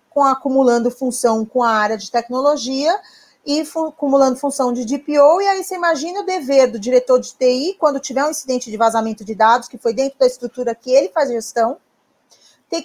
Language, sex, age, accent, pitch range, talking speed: Portuguese, female, 40-59, Brazilian, 230-285 Hz, 200 wpm